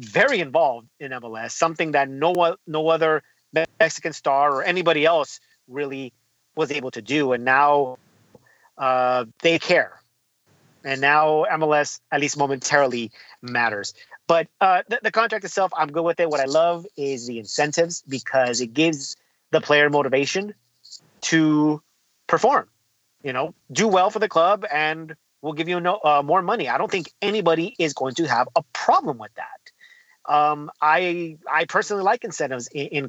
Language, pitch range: English, 140-170 Hz